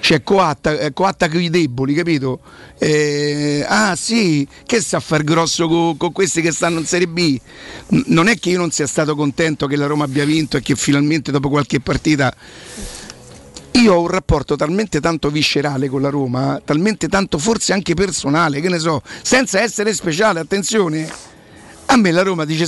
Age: 50-69